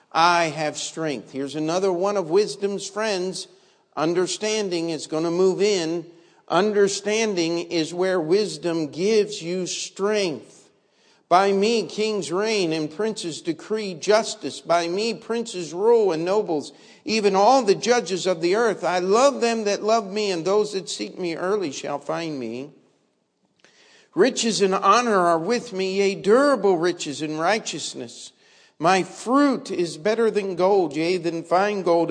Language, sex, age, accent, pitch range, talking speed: English, male, 50-69, American, 155-200 Hz, 150 wpm